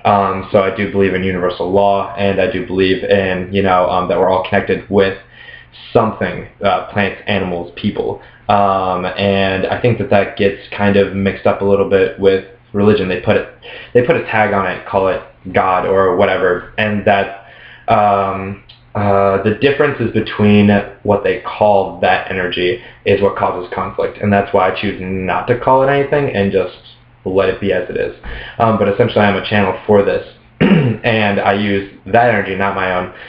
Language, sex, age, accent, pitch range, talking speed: English, male, 20-39, American, 95-105 Hz, 190 wpm